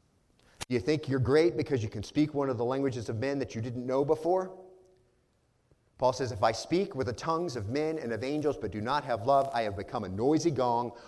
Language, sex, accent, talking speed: English, male, American, 235 wpm